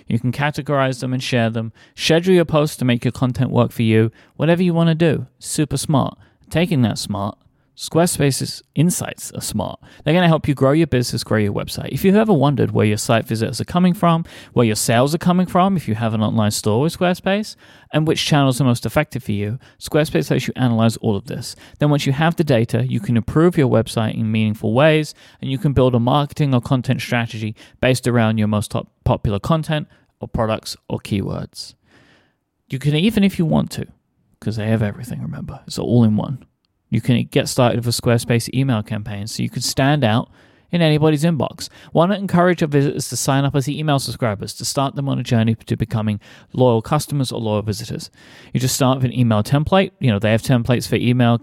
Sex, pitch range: male, 110-145 Hz